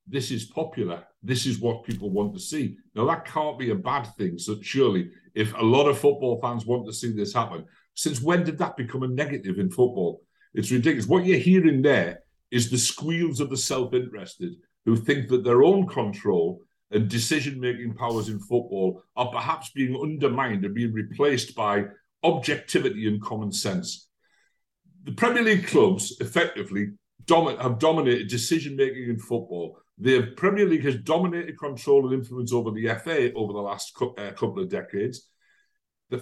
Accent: British